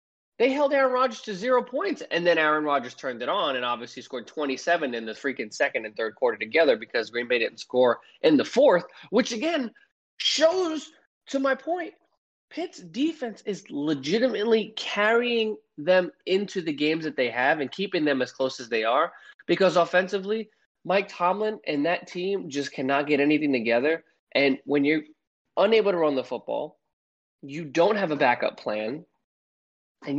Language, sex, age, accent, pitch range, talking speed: English, male, 20-39, American, 140-215 Hz, 175 wpm